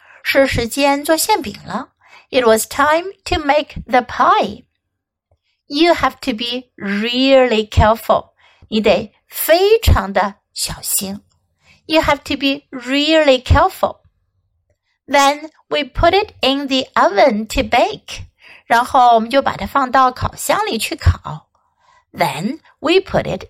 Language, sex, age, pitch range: Chinese, female, 60-79, 220-315 Hz